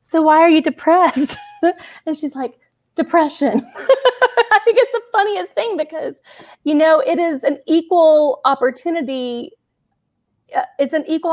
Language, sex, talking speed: English, female, 140 wpm